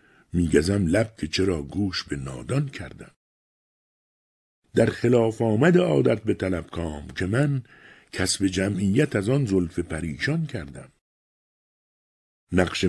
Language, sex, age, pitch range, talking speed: Persian, male, 60-79, 80-120 Hz, 115 wpm